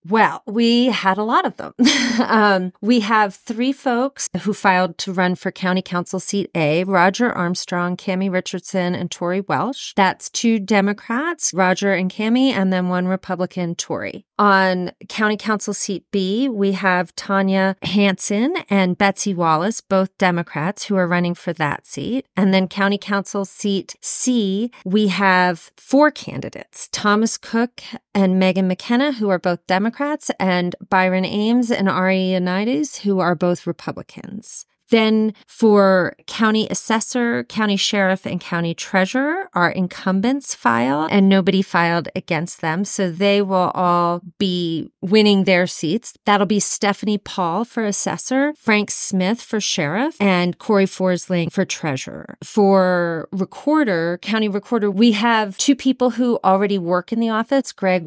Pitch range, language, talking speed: 185-220 Hz, English, 150 wpm